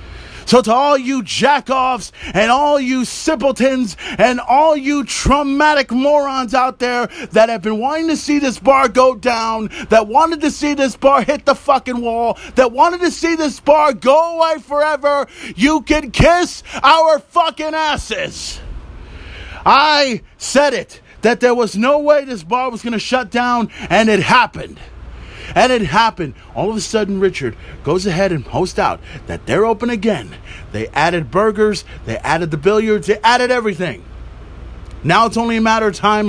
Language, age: English, 30-49